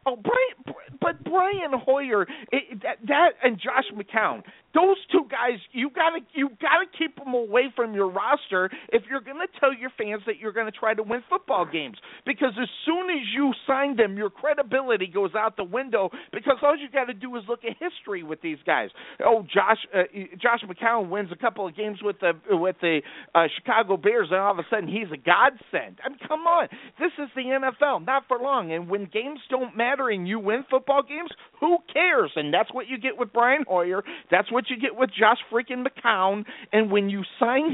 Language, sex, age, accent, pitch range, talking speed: English, male, 50-69, American, 200-270 Hz, 210 wpm